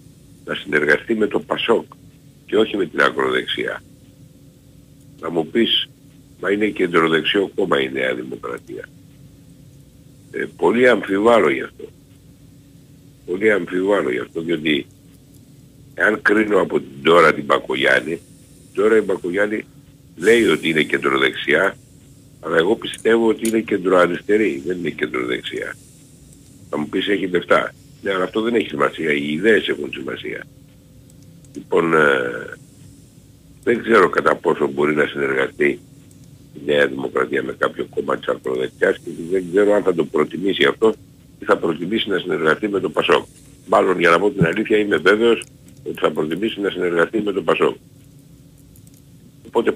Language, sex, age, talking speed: Greek, male, 60-79, 140 wpm